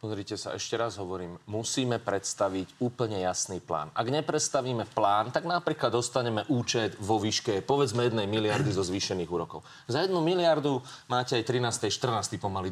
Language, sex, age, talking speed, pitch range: Slovak, male, 30-49, 155 wpm, 110-140 Hz